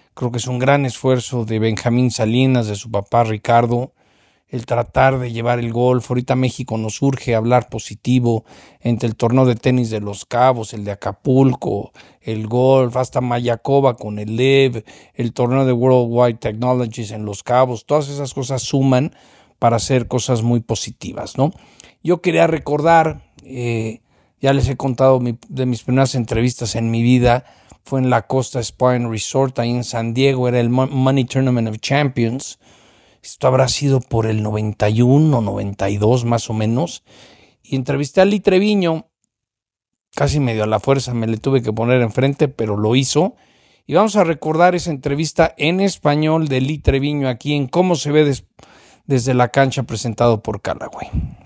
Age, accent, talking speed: 50-69, Mexican, 170 wpm